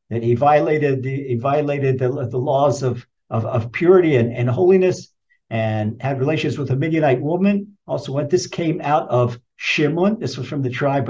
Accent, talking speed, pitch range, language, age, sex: American, 190 wpm, 140-195 Hz, English, 50-69, male